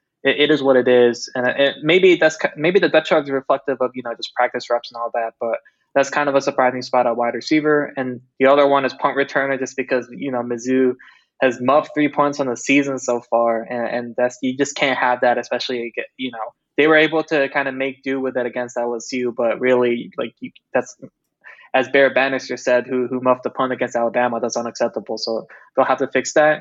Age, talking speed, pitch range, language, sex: 20-39, 225 wpm, 125-140 Hz, English, male